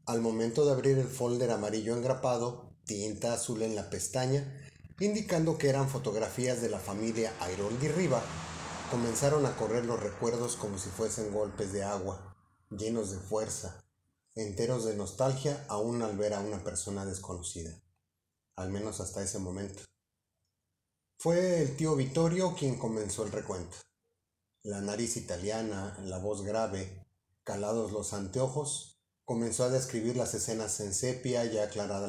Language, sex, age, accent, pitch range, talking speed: Spanish, male, 40-59, Mexican, 100-120 Hz, 145 wpm